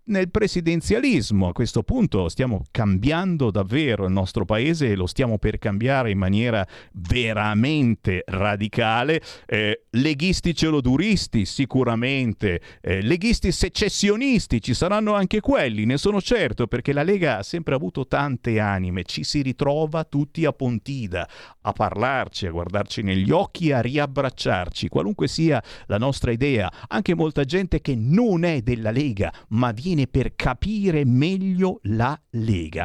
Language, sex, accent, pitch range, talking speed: Italian, male, native, 100-145 Hz, 140 wpm